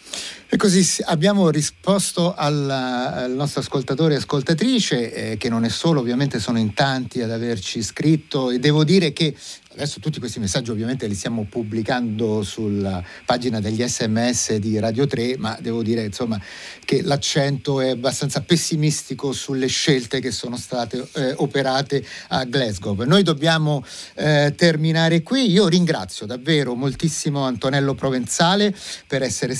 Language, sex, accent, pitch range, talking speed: Italian, male, native, 120-170 Hz, 145 wpm